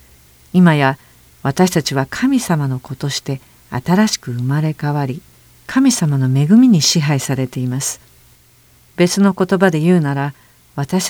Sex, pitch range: female, 130-180 Hz